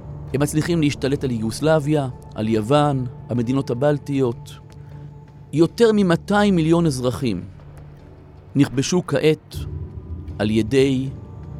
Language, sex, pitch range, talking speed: Hebrew, male, 105-155 Hz, 90 wpm